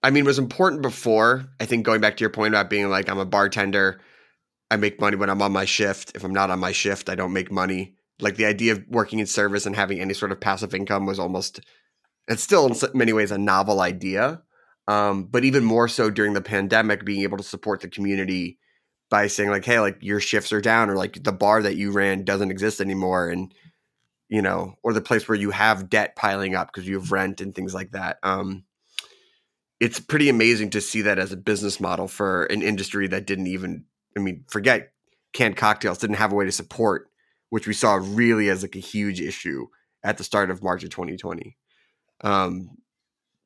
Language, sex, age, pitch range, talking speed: English, male, 20-39, 95-110 Hz, 220 wpm